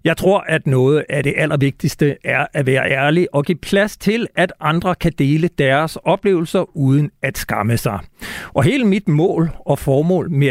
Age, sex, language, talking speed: 60-79, male, Danish, 185 wpm